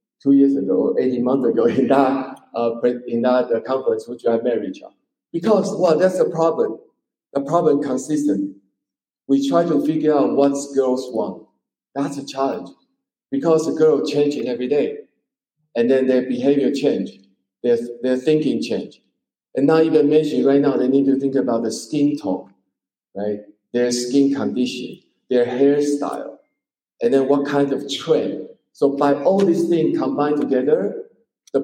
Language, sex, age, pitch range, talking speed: English, male, 50-69, 125-150 Hz, 160 wpm